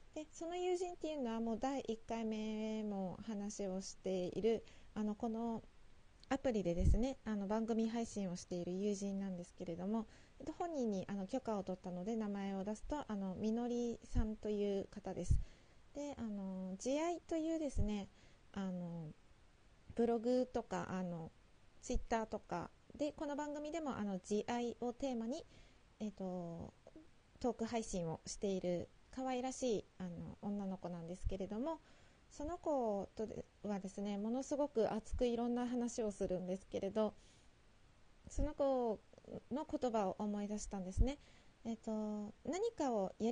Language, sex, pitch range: Japanese, female, 195-245 Hz